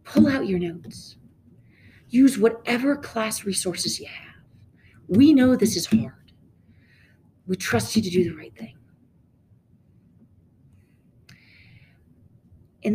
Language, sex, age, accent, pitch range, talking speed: English, female, 40-59, American, 155-220 Hz, 110 wpm